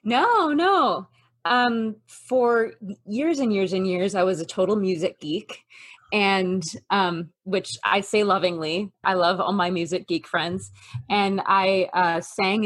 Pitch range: 170-200 Hz